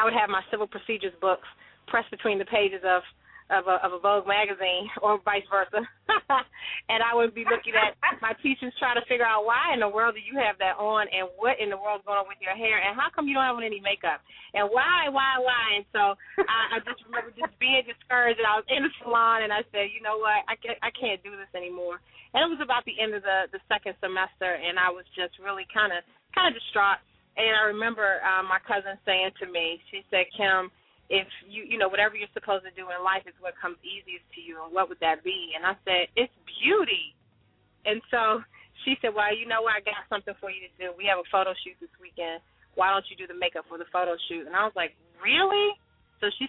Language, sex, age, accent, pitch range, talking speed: English, female, 30-49, American, 185-230 Hz, 245 wpm